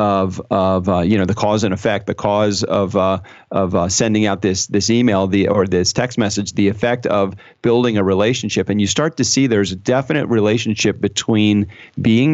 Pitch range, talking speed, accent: 100-125 Hz, 205 wpm, American